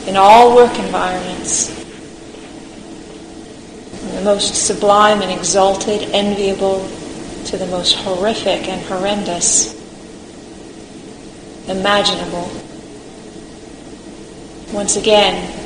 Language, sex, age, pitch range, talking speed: English, female, 40-59, 185-210 Hz, 75 wpm